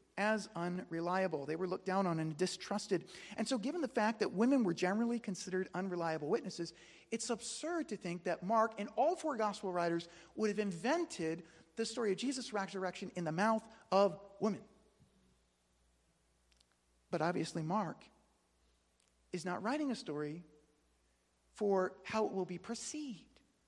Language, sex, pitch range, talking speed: English, male, 165-225 Hz, 150 wpm